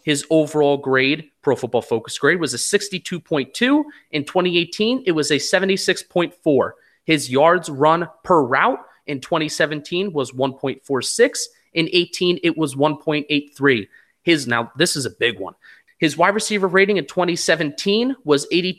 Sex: male